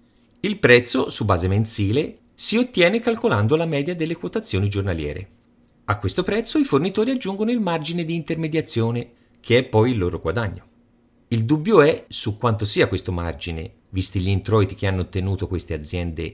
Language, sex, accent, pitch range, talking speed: Italian, male, native, 95-140 Hz, 165 wpm